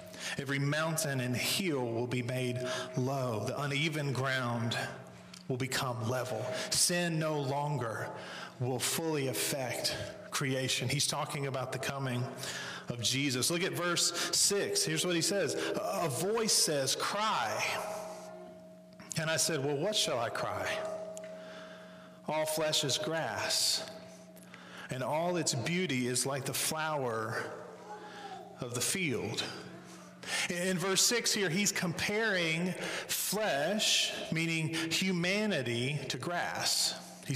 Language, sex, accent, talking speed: English, male, American, 120 wpm